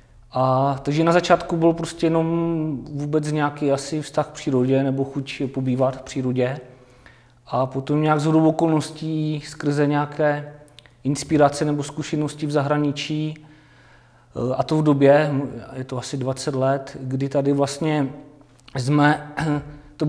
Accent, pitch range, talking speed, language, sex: native, 135-155 Hz, 130 wpm, Czech, male